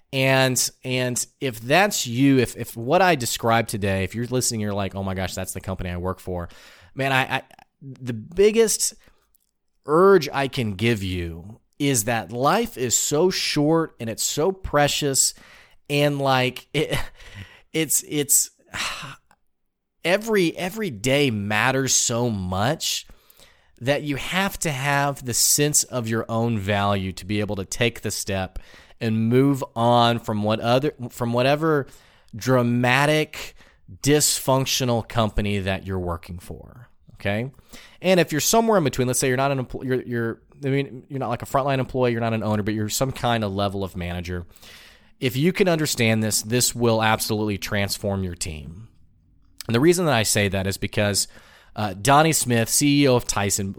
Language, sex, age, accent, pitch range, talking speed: English, male, 30-49, American, 105-140 Hz, 165 wpm